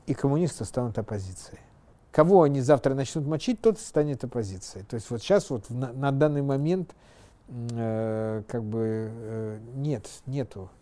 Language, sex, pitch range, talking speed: Russian, male, 115-160 Hz, 150 wpm